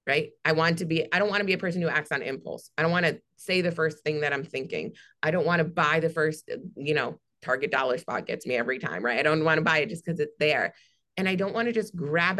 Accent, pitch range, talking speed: American, 155-185 Hz, 295 wpm